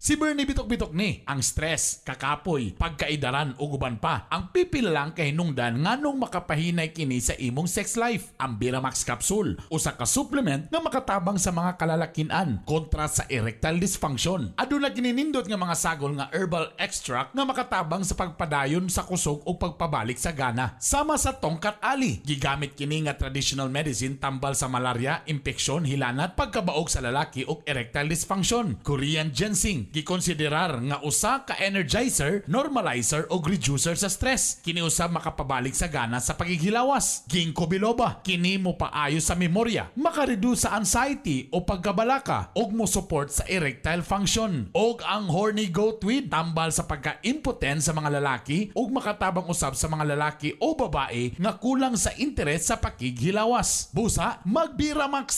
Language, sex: Filipino, male